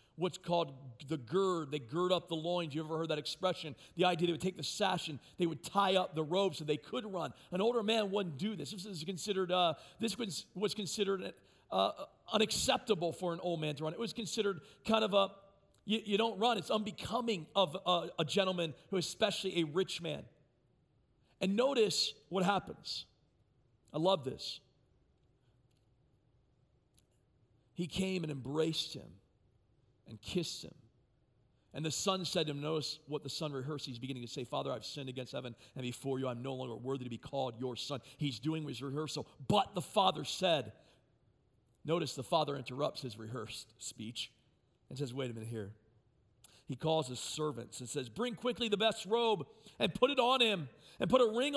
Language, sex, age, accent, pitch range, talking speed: English, male, 40-59, American, 130-200 Hz, 190 wpm